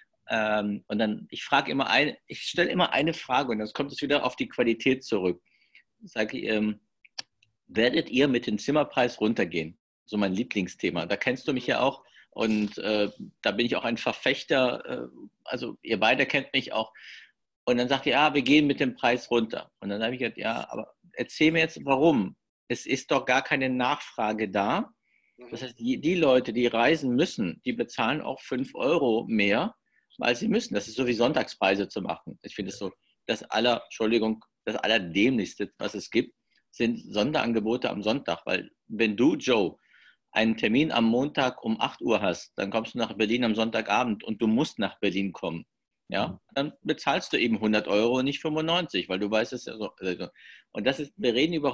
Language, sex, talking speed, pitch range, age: German, male, 195 wpm, 105-130 Hz, 50-69